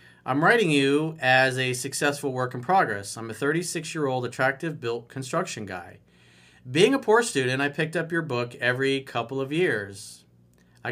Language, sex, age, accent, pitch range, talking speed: English, male, 40-59, American, 105-160 Hz, 165 wpm